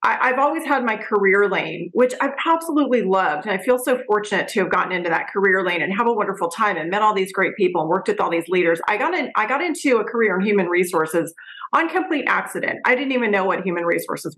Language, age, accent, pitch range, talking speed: English, 30-49, American, 195-255 Hz, 250 wpm